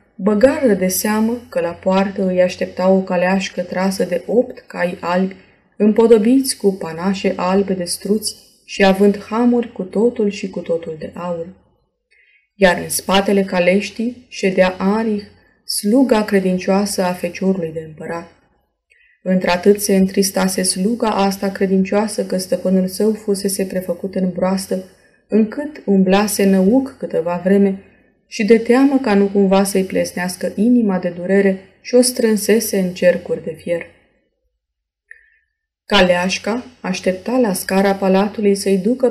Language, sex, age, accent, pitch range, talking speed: Romanian, female, 20-39, native, 185-215 Hz, 130 wpm